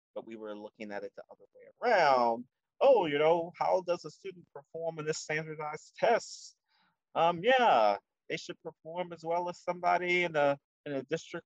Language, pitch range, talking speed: English, 110-160 Hz, 190 wpm